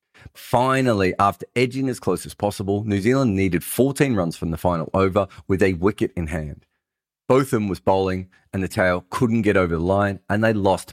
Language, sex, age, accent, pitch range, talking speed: English, male, 30-49, Australian, 90-125 Hz, 205 wpm